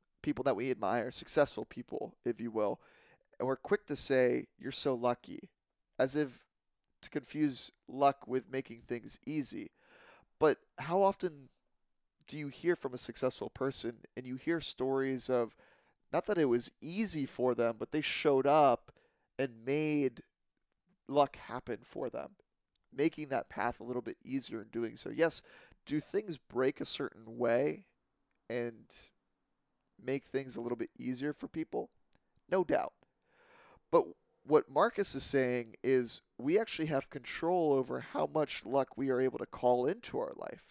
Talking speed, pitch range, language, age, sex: 160 wpm, 125-155 Hz, English, 30-49, male